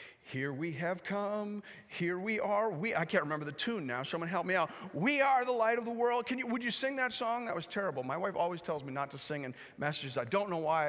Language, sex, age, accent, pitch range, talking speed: English, male, 40-59, American, 135-210 Hz, 270 wpm